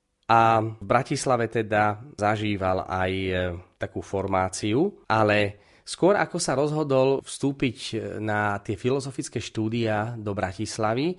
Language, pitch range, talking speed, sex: Slovak, 105-125 Hz, 115 wpm, male